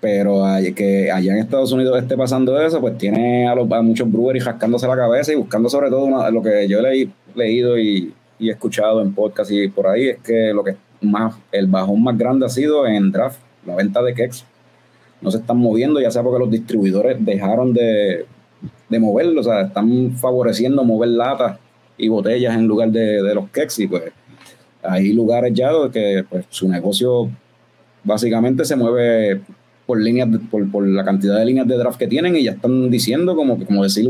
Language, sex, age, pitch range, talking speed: Spanish, male, 30-49, 105-130 Hz, 200 wpm